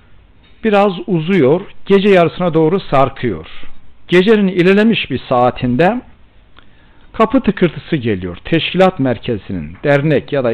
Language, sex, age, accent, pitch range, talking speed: Turkish, male, 60-79, native, 115-185 Hz, 100 wpm